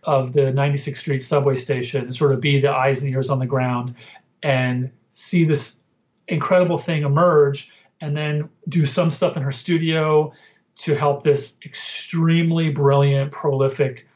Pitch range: 140-165 Hz